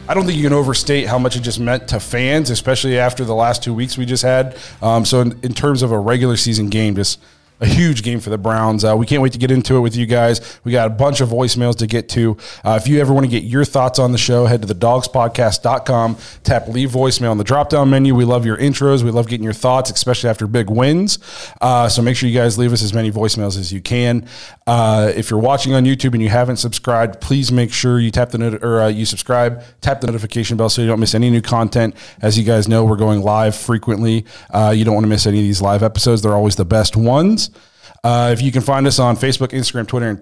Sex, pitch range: male, 110-125 Hz